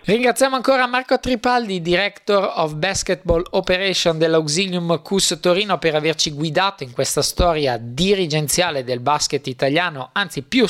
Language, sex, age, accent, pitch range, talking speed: Italian, male, 20-39, native, 150-185 Hz, 130 wpm